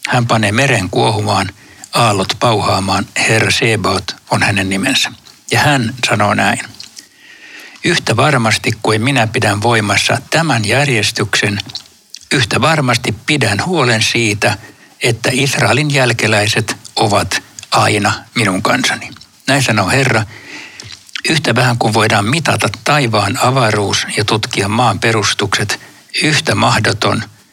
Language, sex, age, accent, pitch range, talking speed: Finnish, male, 60-79, native, 105-130 Hz, 110 wpm